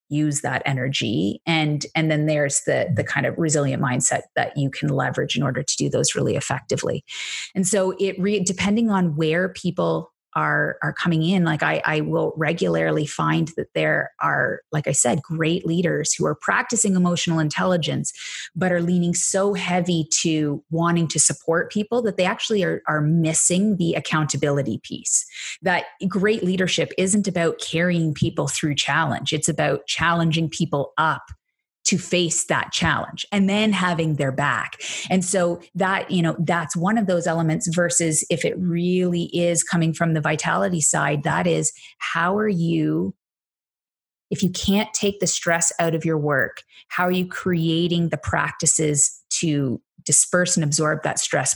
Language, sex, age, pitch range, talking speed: English, female, 30-49, 155-185 Hz, 170 wpm